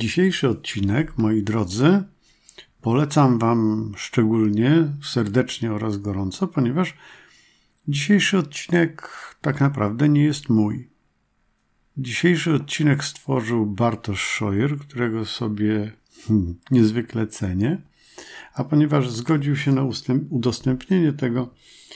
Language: Polish